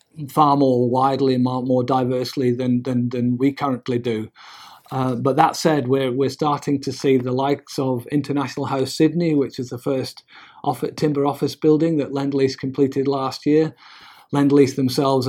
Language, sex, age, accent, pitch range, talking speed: English, male, 40-59, British, 125-145 Hz, 165 wpm